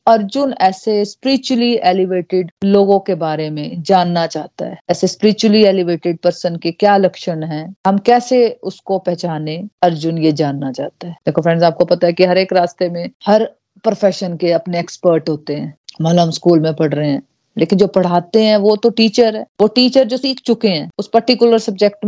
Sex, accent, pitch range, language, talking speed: female, native, 170-225 Hz, Hindi, 190 wpm